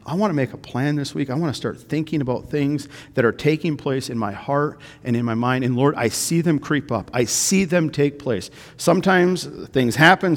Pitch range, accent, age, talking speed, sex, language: 120-160 Hz, American, 50-69, 235 wpm, male, English